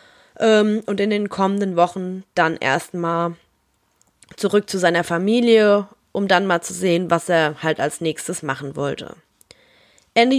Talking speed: 140 wpm